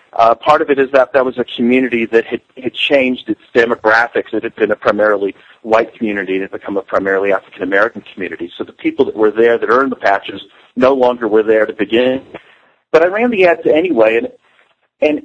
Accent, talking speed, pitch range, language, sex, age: American, 215 wpm, 115-170 Hz, English, male, 40-59